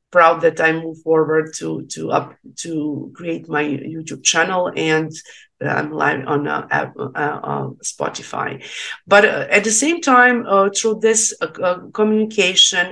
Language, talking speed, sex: English, 160 wpm, female